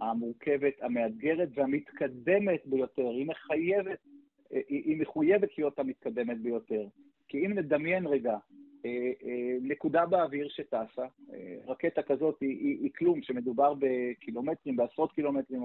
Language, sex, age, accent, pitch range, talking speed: Hebrew, male, 50-69, native, 135-225 Hz, 105 wpm